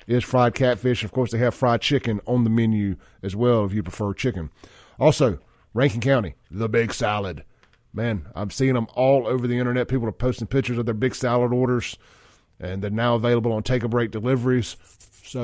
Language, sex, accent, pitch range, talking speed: English, male, American, 105-125 Hz, 200 wpm